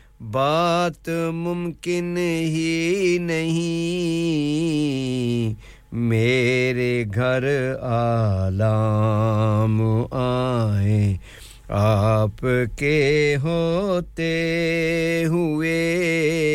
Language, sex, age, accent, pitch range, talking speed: English, male, 50-69, Indian, 120-165 Hz, 40 wpm